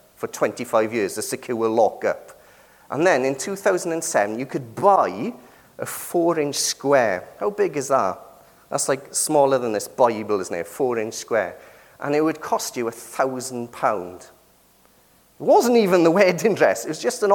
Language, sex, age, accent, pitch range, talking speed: English, male, 40-59, British, 115-185 Hz, 170 wpm